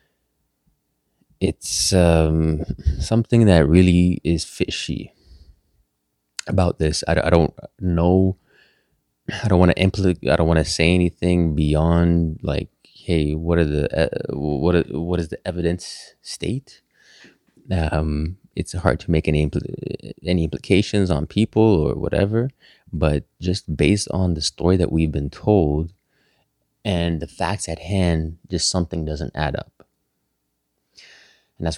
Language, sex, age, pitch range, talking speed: English, male, 20-39, 75-90 Hz, 135 wpm